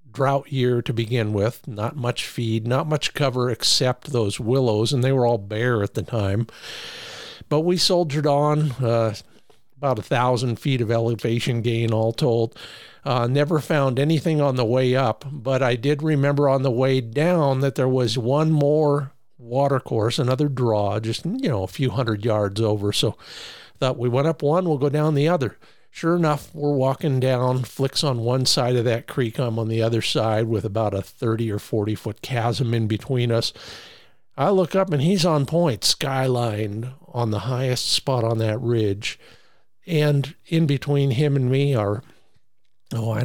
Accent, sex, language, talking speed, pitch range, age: American, male, English, 180 wpm, 115-145 Hz, 50-69